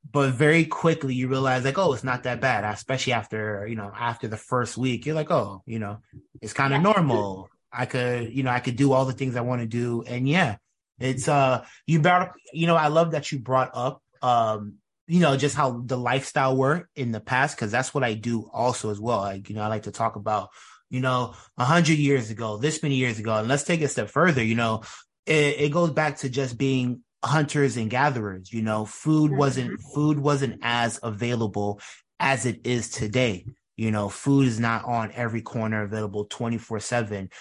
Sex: male